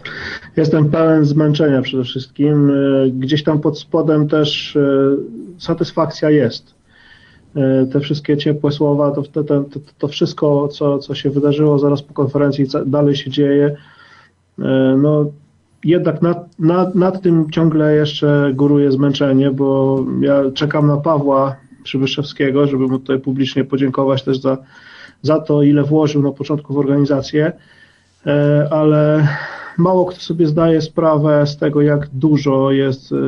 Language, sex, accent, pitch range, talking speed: Polish, male, native, 140-155 Hz, 130 wpm